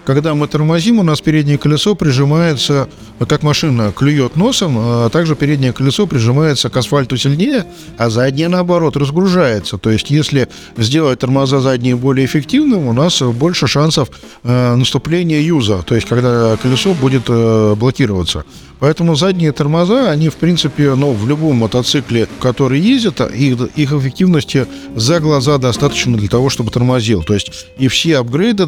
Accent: native